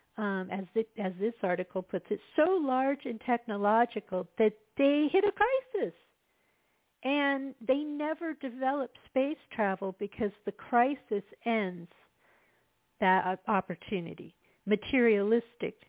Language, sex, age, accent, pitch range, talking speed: English, female, 50-69, American, 200-260 Hz, 110 wpm